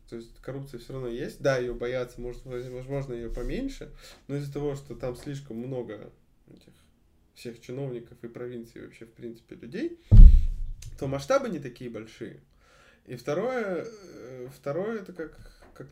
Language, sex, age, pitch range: Russian, male, 20-39, 115-150 Hz